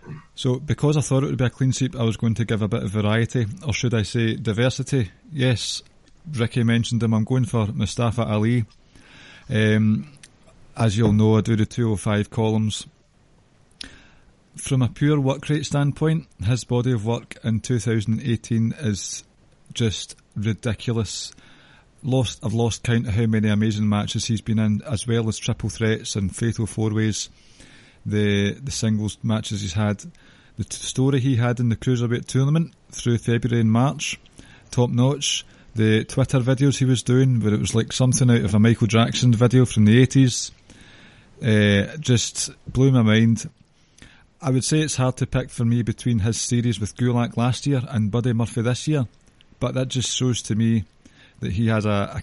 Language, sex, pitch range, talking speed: English, male, 110-130 Hz, 180 wpm